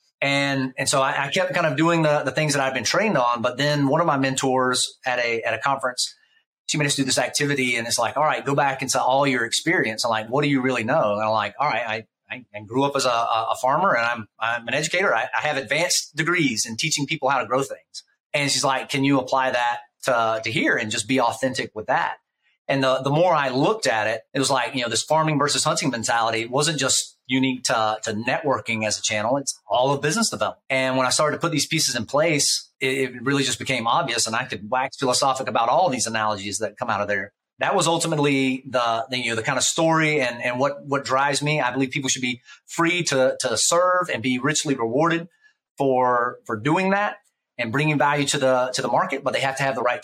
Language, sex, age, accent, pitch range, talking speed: English, male, 30-49, American, 120-145 Hz, 250 wpm